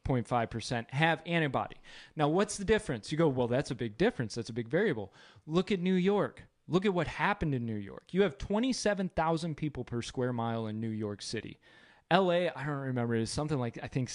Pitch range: 130-195 Hz